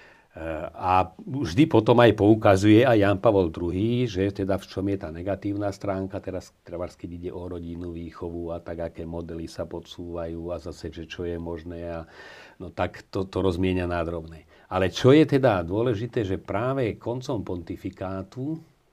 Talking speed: 160 wpm